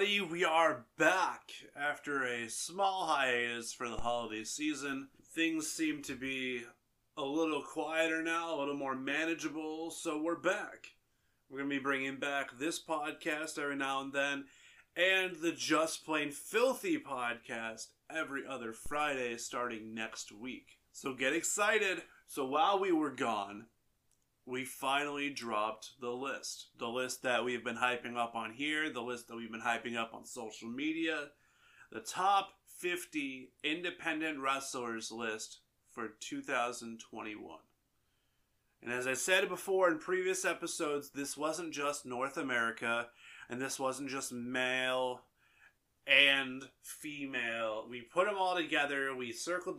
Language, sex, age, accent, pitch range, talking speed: English, male, 30-49, American, 120-160 Hz, 140 wpm